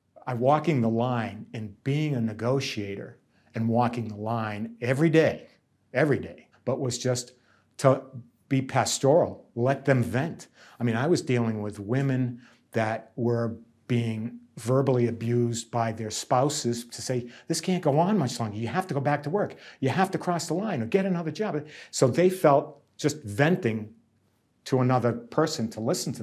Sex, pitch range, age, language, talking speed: male, 120-155 Hz, 50-69, English, 175 wpm